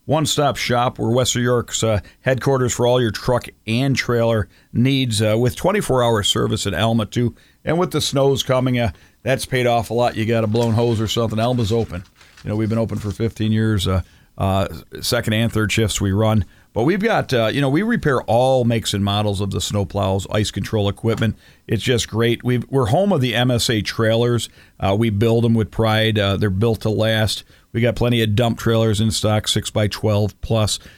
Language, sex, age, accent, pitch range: Japanese, male, 50-69, American, 100-120 Hz